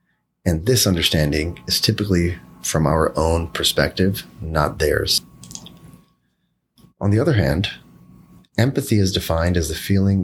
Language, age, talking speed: English, 30-49, 125 wpm